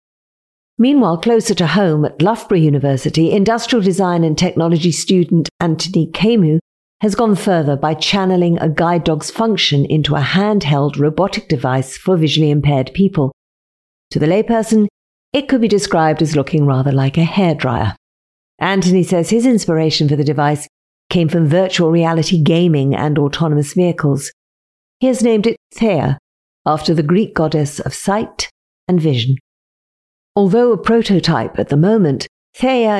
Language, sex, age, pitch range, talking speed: English, female, 50-69, 150-195 Hz, 145 wpm